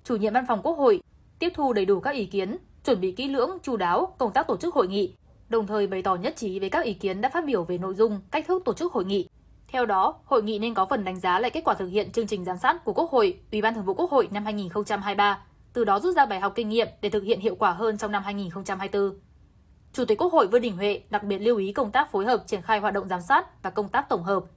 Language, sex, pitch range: Vietnamese, female, 190-240 Hz